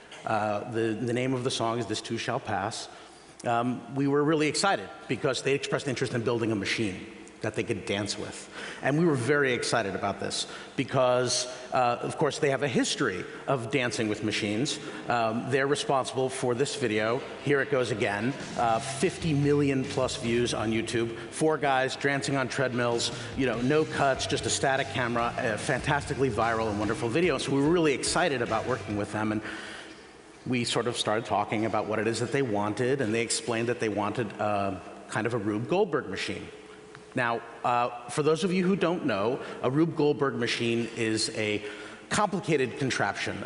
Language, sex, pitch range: Chinese, male, 115-140 Hz